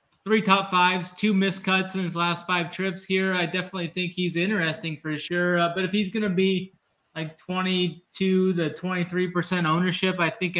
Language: English